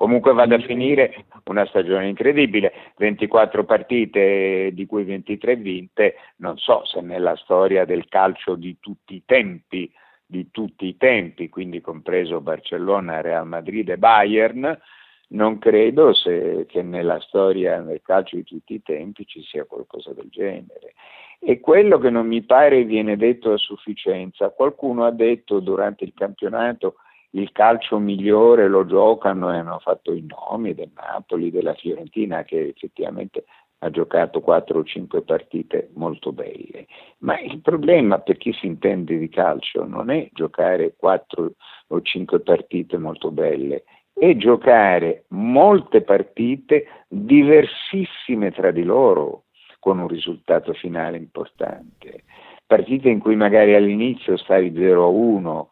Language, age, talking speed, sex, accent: Italian, 50-69, 140 wpm, male, native